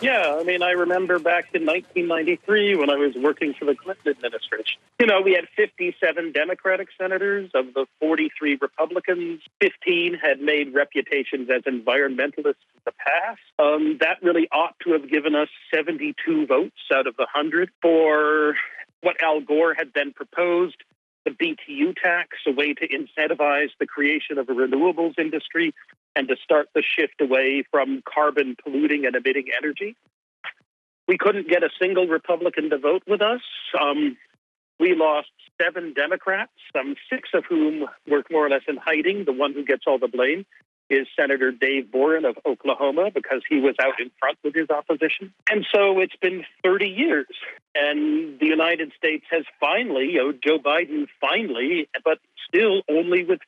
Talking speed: 170 wpm